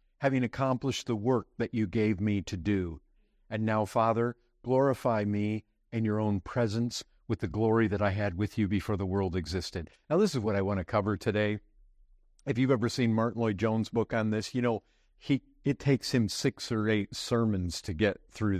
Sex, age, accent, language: male, 50-69, American, English